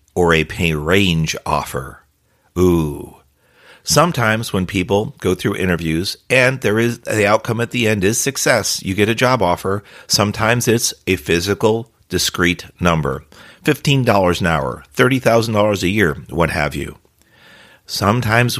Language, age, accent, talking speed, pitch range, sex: English, 50-69, American, 140 wpm, 85-110 Hz, male